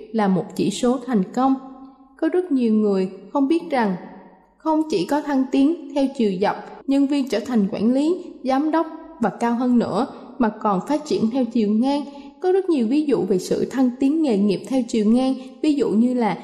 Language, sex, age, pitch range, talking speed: Vietnamese, female, 20-39, 220-290 Hz, 210 wpm